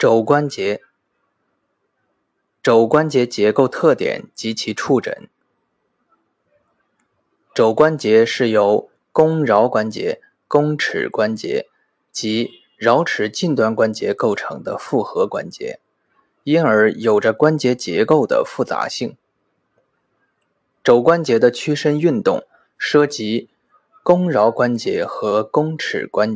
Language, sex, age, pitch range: Chinese, male, 20-39, 115-160 Hz